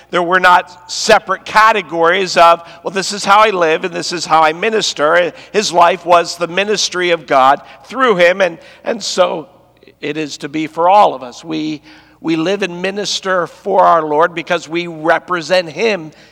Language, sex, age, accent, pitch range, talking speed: English, male, 50-69, American, 160-200 Hz, 185 wpm